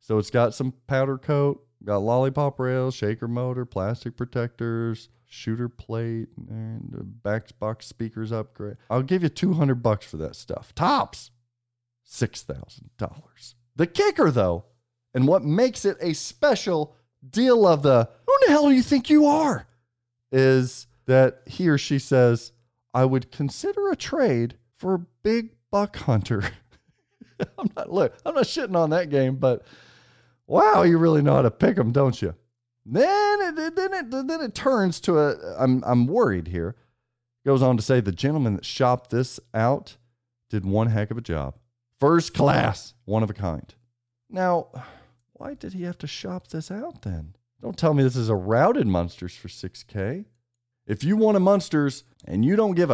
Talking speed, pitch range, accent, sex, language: 175 wpm, 115-155 Hz, American, male, English